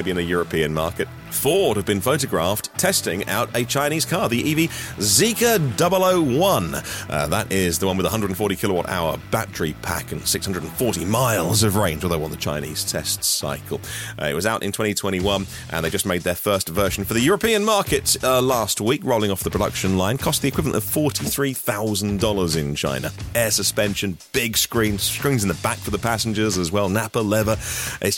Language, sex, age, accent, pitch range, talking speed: English, male, 40-59, British, 95-130 Hz, 185 wpm